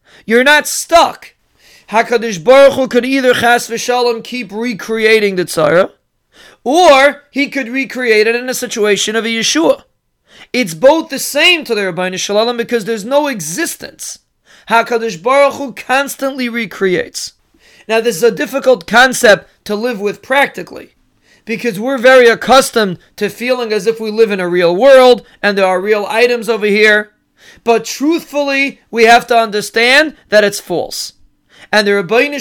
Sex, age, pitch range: male, 30-49, 215-265 Hz